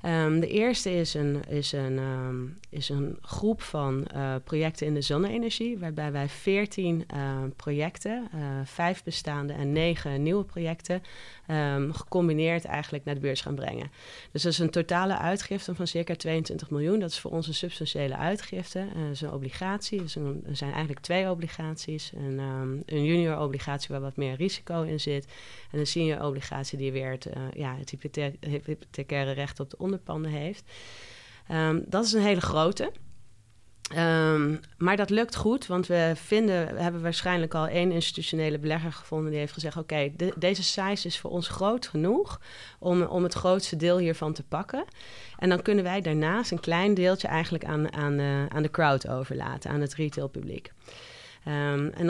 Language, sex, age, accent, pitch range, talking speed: Dutch, female, 30-49, Dutch, 145-180 Hz, 175 wpm